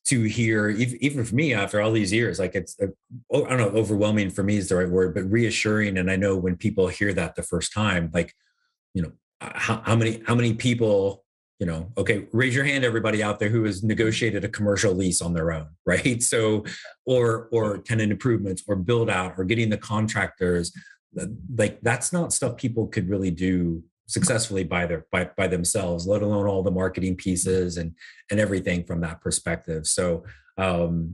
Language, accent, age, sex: English, American, 30-49, male